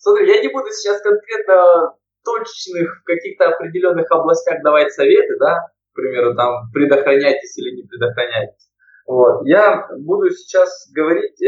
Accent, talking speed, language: native, 125 wpm, Russian